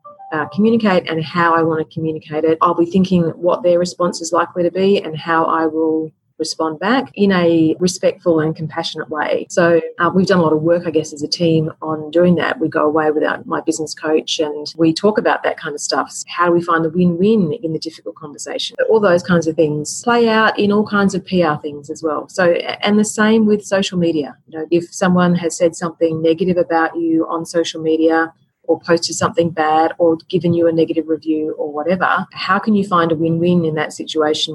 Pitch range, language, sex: 160-180 Hz, English, female